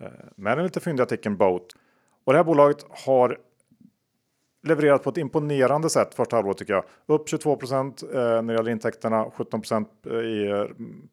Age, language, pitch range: 40-59, Swedish, 105-125 Hz